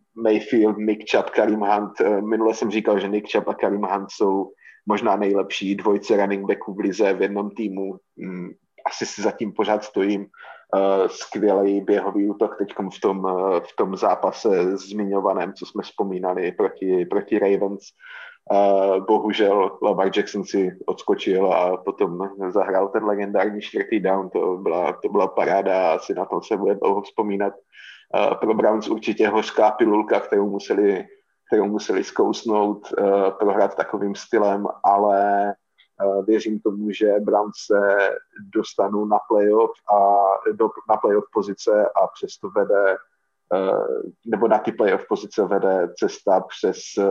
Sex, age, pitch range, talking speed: male, 30-49, 100-110 Hz, 135 wpm